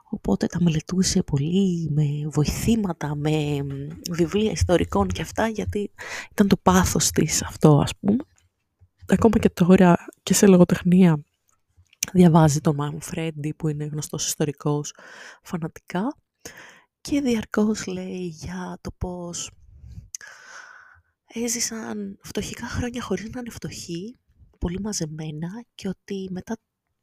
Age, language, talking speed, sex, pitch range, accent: 20-39, Greek, 115 wpm, female, 150-205 Hz, native